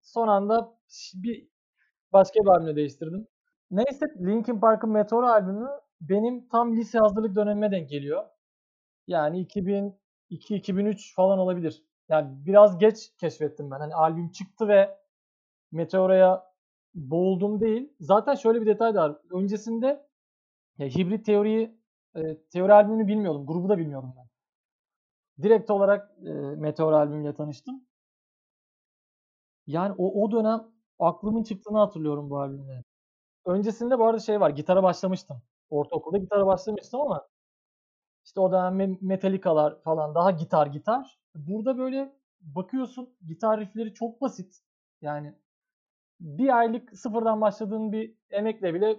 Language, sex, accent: Turkish, male, native